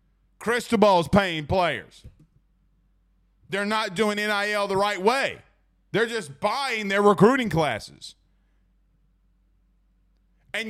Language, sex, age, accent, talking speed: English, male, 40-59, American, 95 wpm